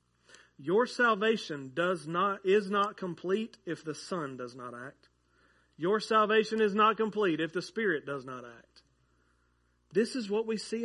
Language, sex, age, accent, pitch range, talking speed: English, male, 40-59, American, 135-205 Hz, 160 wpm